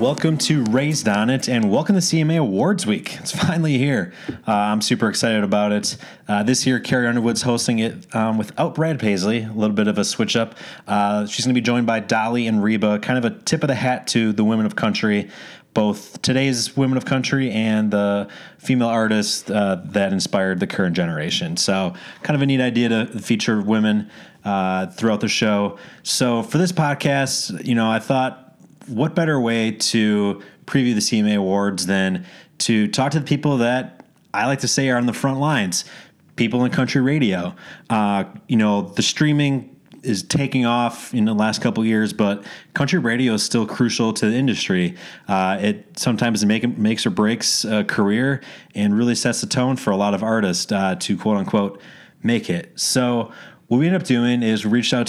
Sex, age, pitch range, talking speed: male, 30-49, 105-130 Hz, 195 wpm